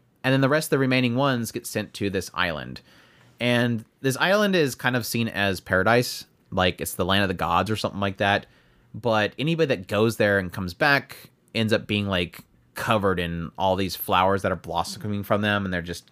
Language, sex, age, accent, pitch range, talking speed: English, male, 30-49, American, 95-130 Hz, 215 wpm